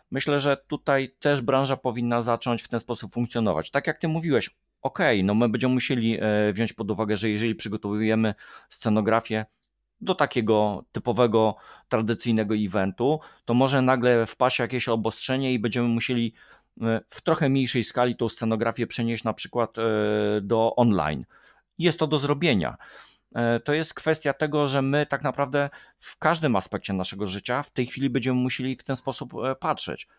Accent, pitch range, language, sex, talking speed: native, 105-135 Hz, Polish, male, 155 wpm